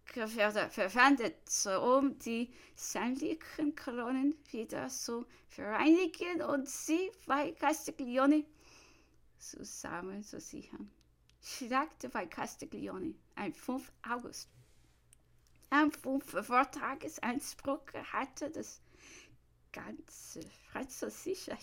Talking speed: 80 wpm